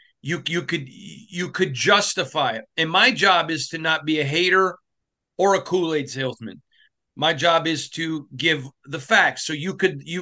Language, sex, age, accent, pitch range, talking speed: English, male, 40-59, American, 150-190 Hz, 180 wpm